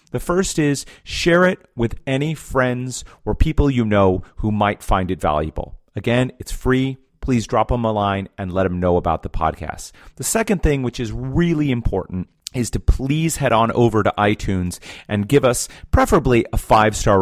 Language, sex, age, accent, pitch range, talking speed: English, male, 40-59, American, 100-140 Hz, 185 wpm